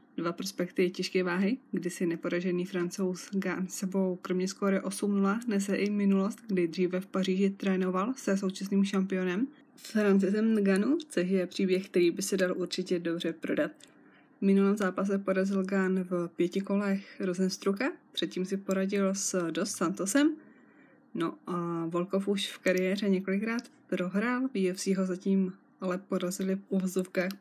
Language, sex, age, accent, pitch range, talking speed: Czech, female, 20-39, native, 185-210 Hz, 140 wpm